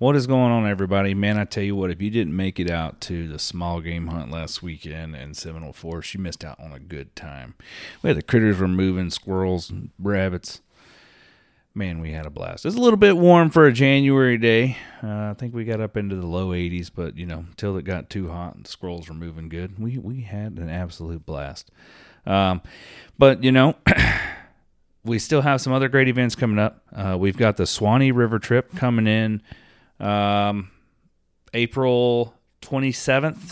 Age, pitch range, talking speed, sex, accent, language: 30-49, 85-115 Hz, 200 wpm, male, American, English